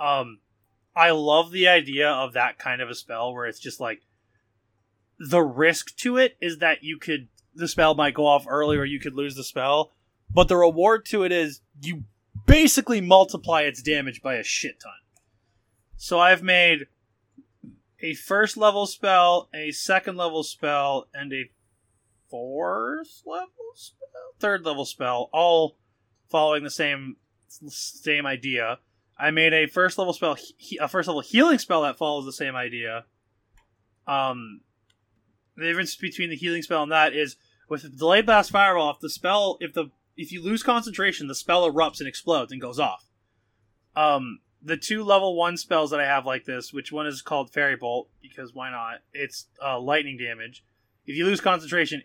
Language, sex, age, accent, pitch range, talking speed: English, male, 20-39, American, 115-170 Hz, 175 wpm